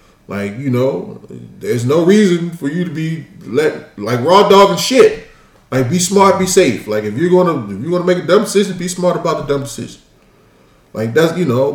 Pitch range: 110-160 Hz